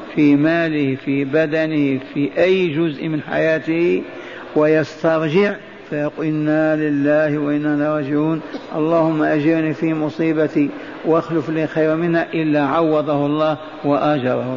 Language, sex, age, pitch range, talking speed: Arabic, male, 50-69, 145-170 Hz, 110 wpm